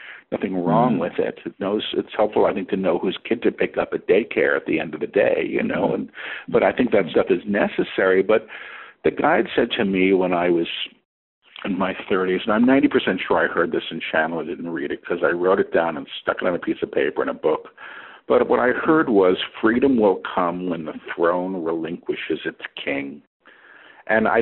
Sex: male